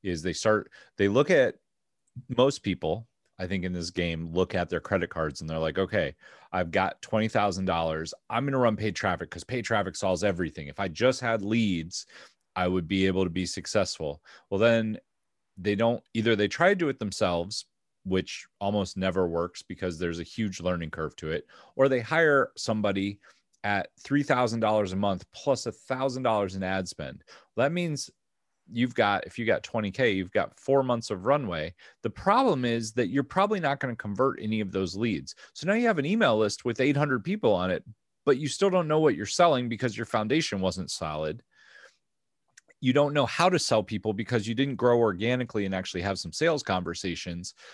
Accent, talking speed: American, 195 wpm